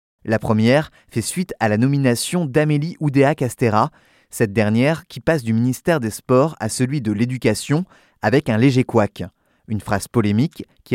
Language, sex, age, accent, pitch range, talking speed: French, male, 20-39, French, 110-145 Hz, 160 wpm